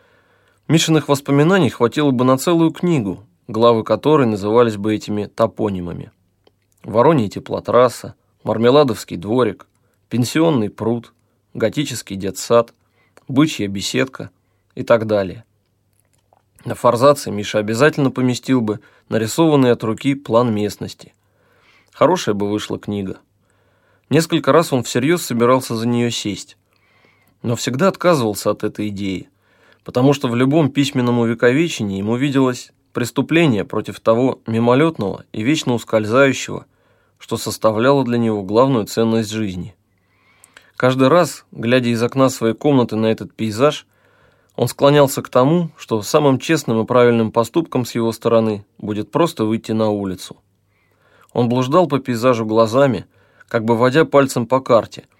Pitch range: 105-135 Hz